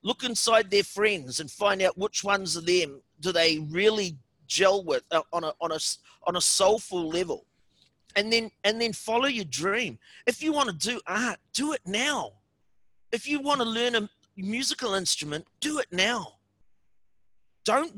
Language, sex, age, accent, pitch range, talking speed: English, male, 40-59, Australian, 185-265 Hz, 175 wpm